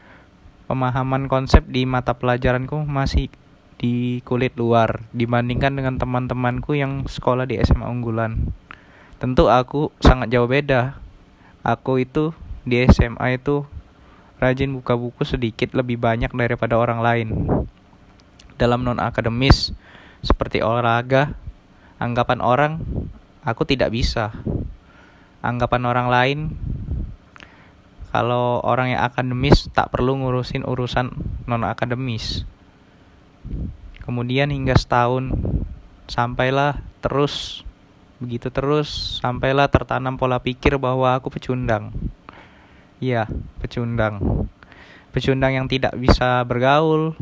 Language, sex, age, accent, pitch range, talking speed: Indonesian, male, 20-39, native, 115-130 Hz, 100 wpm